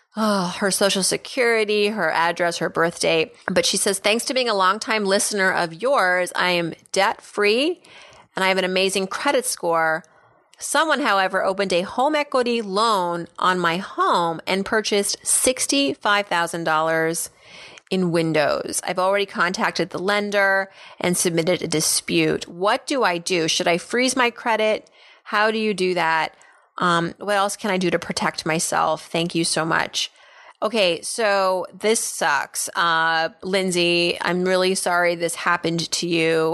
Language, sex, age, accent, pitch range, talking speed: English, female, 30-49, American, 170-210 Hz, 155 wpm